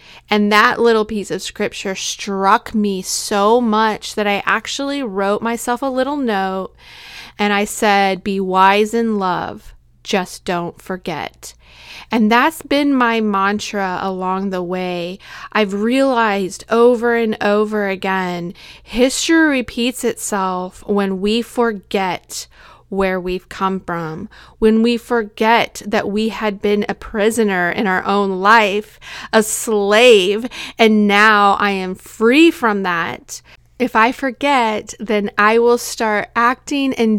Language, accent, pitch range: English, American, 195-230 Hz